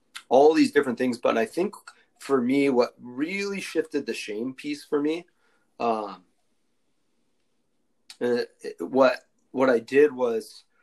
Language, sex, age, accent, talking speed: English, male, 30-49, American, 140 wpm